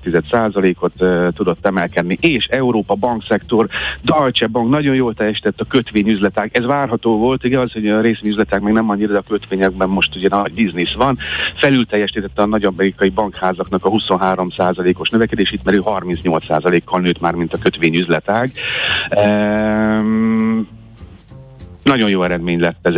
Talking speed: 145 wpm